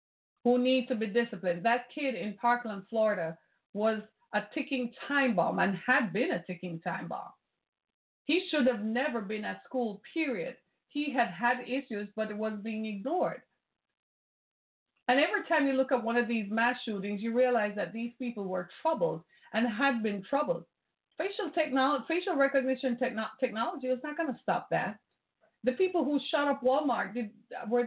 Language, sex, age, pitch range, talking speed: English, female, 30-49, 205-265 Hz, 170 wpm